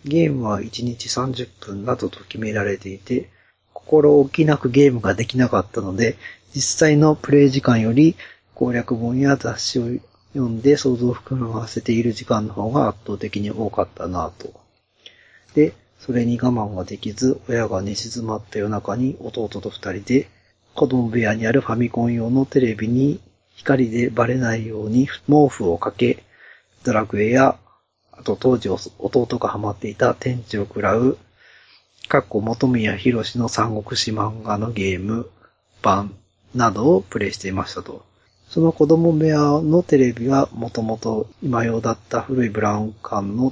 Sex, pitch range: male, 105-130 Hz